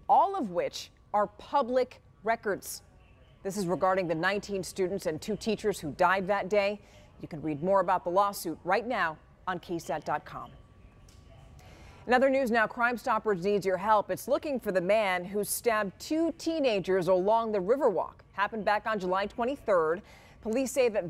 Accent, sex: American, female